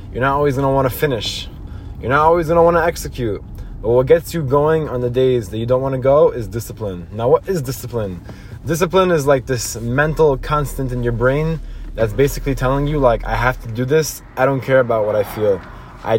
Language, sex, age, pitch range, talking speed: English, male, 20-39, 120-155 Hz, 215 wpm